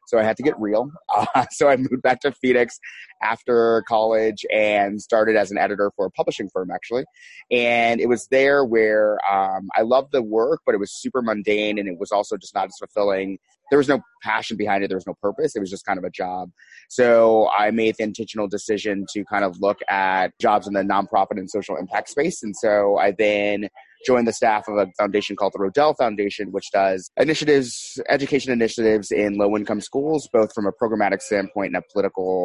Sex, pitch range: male, 95-115 Hz